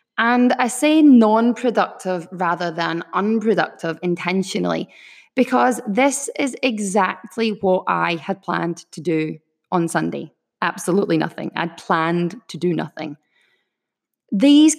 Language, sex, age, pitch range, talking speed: English, female, 20-39, 170-220 Hz, 115 wpm